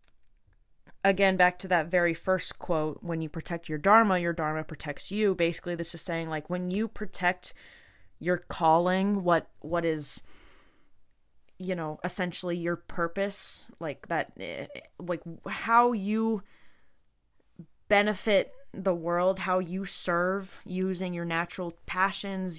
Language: English